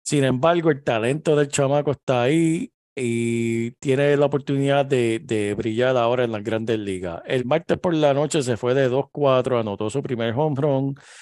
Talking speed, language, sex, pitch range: 180 wpm, Spanish, male, 120-150 Hz